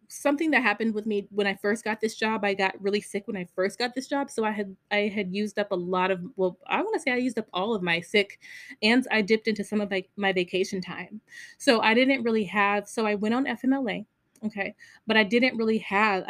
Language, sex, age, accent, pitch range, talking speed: English, female, 20-39, American, 190-230 Hz, 255 wpm